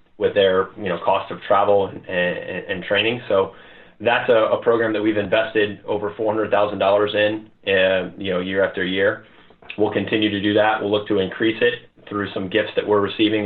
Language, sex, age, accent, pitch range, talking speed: English, male, 30-49, American, 95-110 Hz, 210 wpm